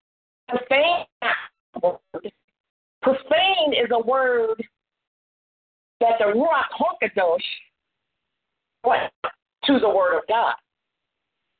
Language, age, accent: English, 50-69, American